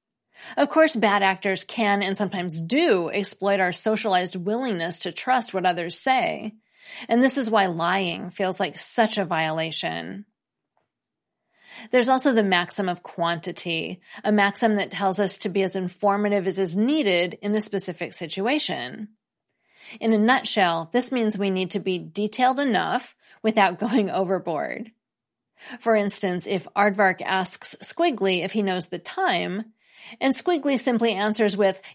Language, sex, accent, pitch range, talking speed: English, female, American, 185-235 Hz, 150 wpm